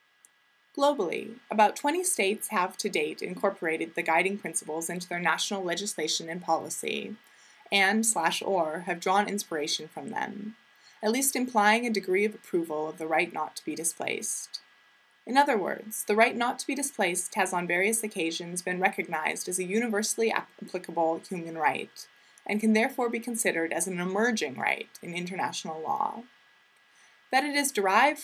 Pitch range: 165-220 Hz